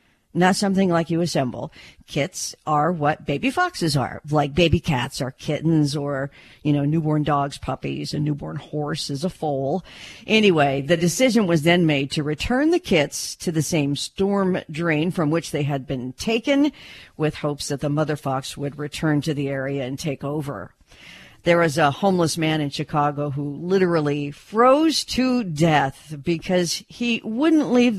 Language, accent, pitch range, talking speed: English, American, 145-190 Hz, 170 wpm